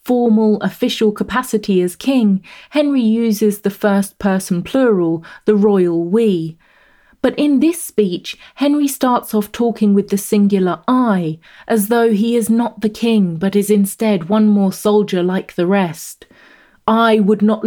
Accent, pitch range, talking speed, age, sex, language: British, 195-235 Hz, 155 wpm, 30-49, female, English